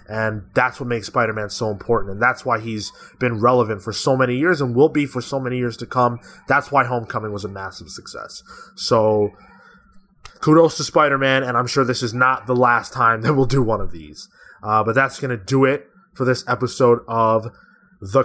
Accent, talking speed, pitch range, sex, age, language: American, 210 wpm, 115-140 Hz, male, 20-39, English